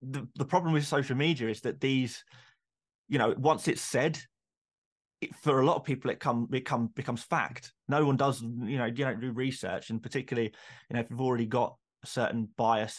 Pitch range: 115-135 Hz